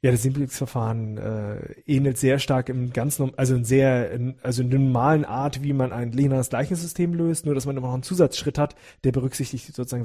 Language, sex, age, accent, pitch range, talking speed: German, male, 40-59, German, 125-165 Hz, 205 wpm